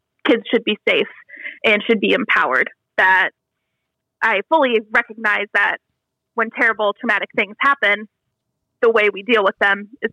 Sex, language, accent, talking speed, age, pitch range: female, English, American, 150 wpm, 20-39, 215-255 Hz